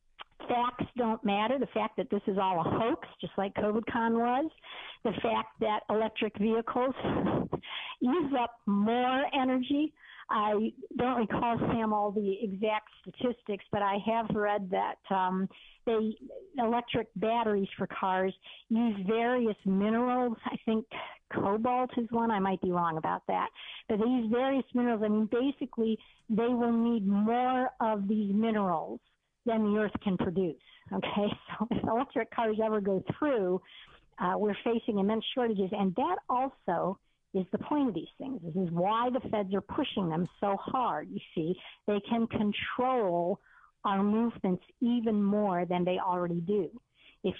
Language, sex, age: English, female, 50-69